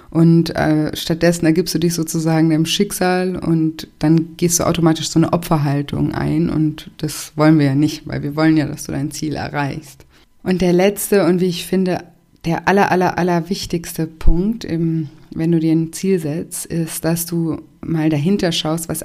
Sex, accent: female, German